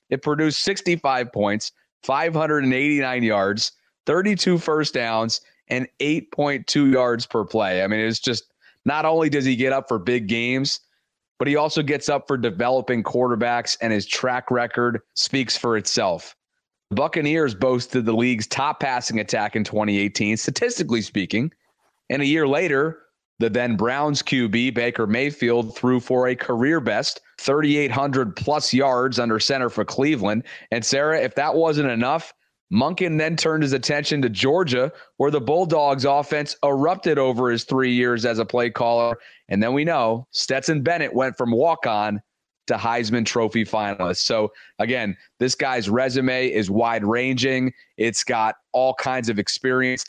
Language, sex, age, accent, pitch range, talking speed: English, male, 30-49, American, 115-140 Hz, 155 wpm